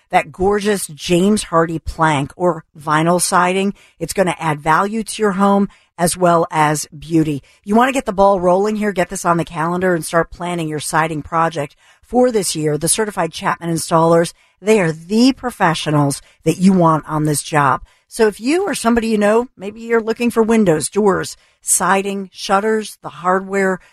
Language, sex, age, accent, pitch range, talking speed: English, female, 50-69, American, 155-195 Hz, 185 wpm